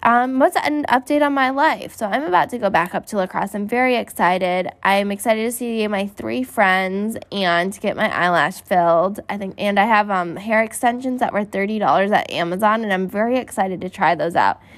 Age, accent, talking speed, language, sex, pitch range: 10-29, American, 225 wpm, English, female, 180-230 Hz